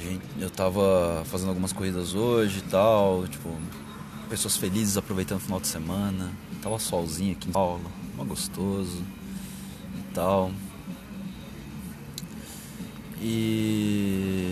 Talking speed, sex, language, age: 110 wpm, male, Portuguese, 20-39